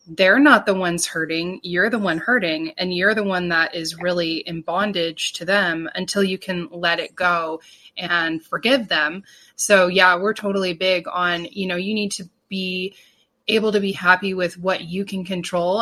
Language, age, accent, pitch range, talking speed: English, 20-39, American, 180-210 Hz, 190 wpm